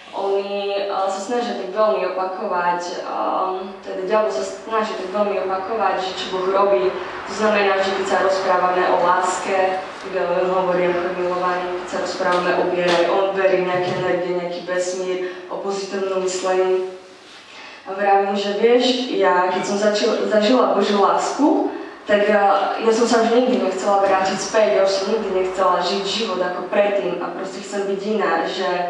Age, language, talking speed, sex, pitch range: 20-39, Slovak, 160 wpm, female, 180-210 Hz